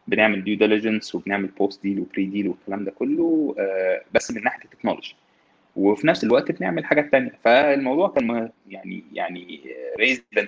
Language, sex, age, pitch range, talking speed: Arabic, male, 20-39, 95-135 Hz, 155 wpm